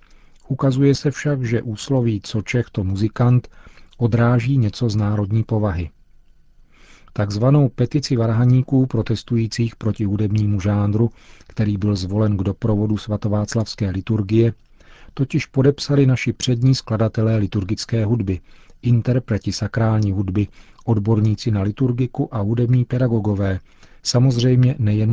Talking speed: 110 wpm